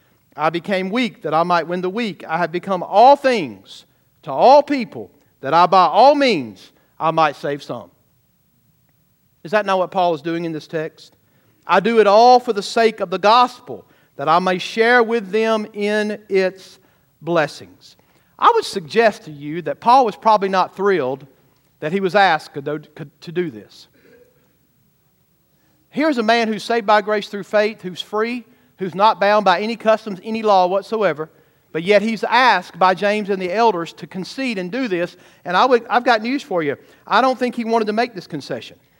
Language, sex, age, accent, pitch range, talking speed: English, male, 50-69, American, 165-225 Hz, 190 wpm